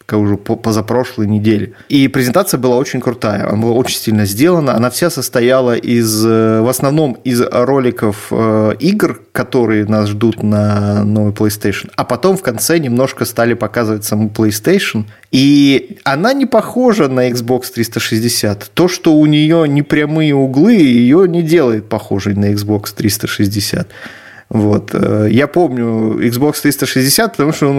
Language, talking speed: Russian, 145 wpm